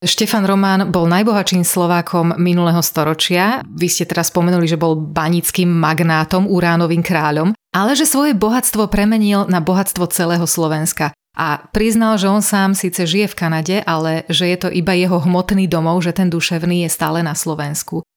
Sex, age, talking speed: female, 30-49, 165 wpm